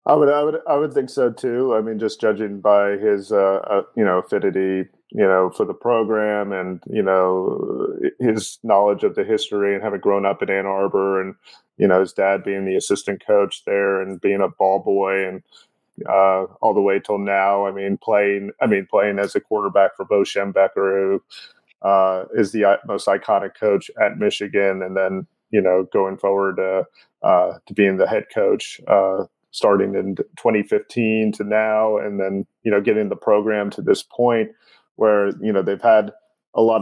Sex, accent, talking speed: male, American, 190 wpm